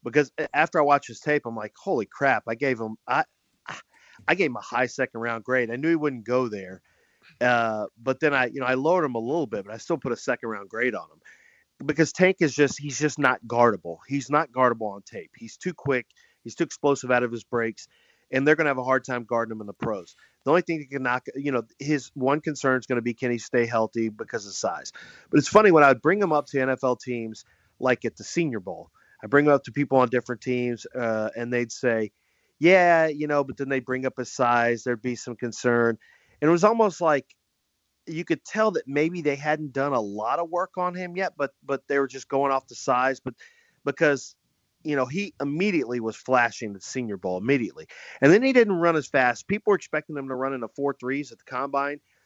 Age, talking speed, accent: 30-49, 240 wpm, American